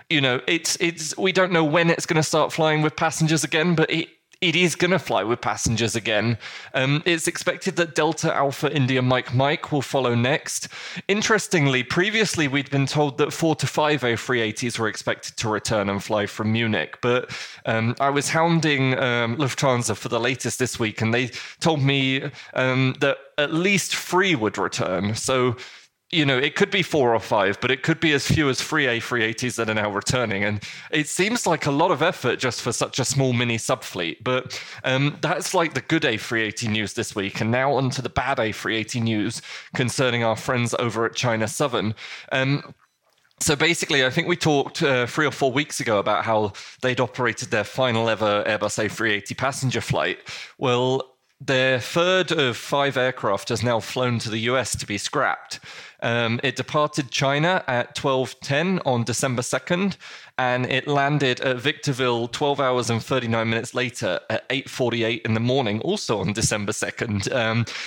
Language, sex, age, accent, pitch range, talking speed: English, male, 20-39, British, 115-150 Hz, 185 wpm